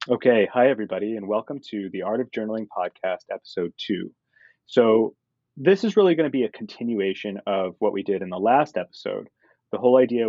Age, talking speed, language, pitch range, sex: 30-49, 190 wpm, English, 100-120 Hz, male